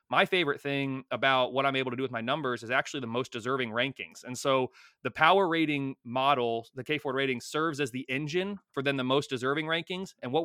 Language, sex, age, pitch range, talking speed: English, male, 30-49, 130-165 Hz, 225 wpm